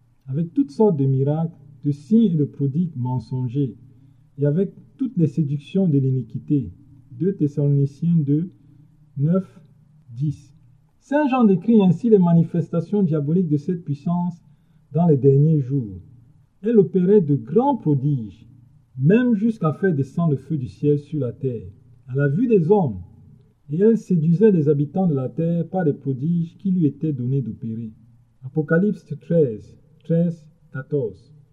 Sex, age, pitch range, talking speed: male, 50-69, 140-190 Hz, 150 wpm